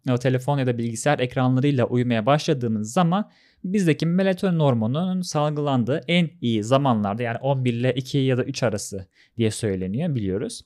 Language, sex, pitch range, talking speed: Turkish, male, 120-170 Hz, 150 wpm